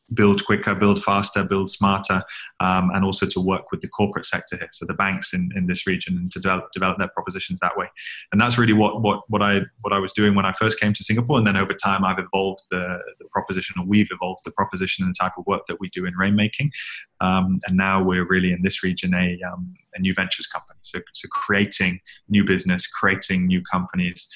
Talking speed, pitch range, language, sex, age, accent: 230 wpm, 95-105 Hz, English, male, 20-39, British